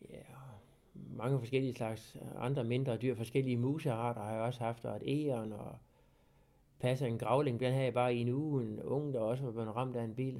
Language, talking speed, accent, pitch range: Danish, 220 wpm, native, 115-135 Hz